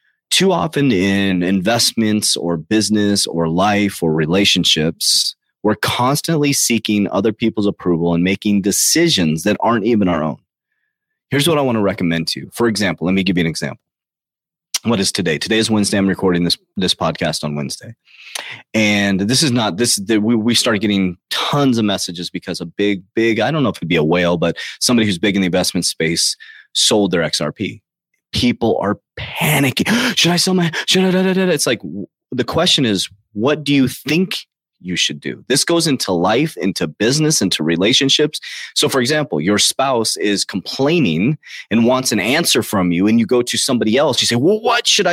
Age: 30-49